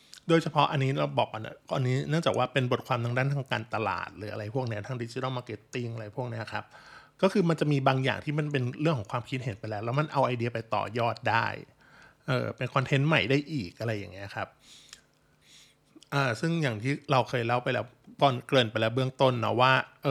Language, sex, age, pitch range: Thai, male, 20-39, 125-150 Hz